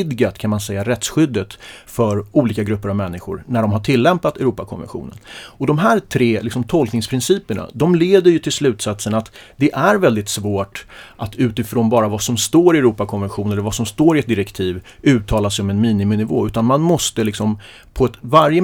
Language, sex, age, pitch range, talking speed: Swedish, male, 30-49, 105-135 Hz, 185 wpm